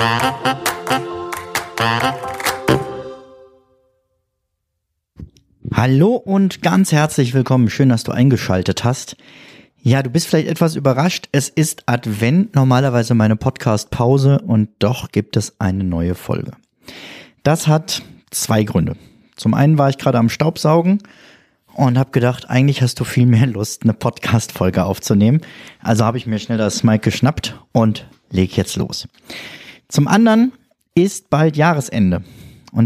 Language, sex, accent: German, male, German